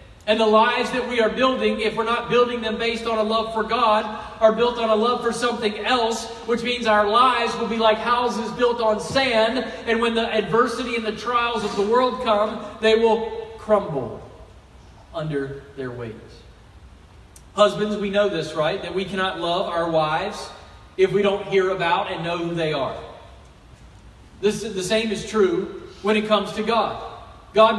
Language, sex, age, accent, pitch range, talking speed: English, male, 40-59, American, 180-230 Hz, 185 wpm